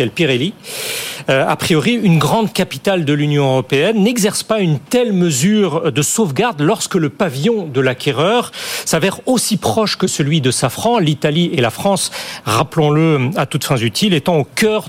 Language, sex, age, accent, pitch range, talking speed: French, male, 40-59, French, 155-220 Hz, 160 wpm